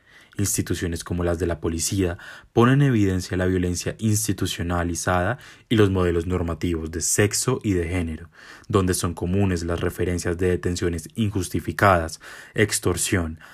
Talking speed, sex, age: 135 wpm, male, 20-39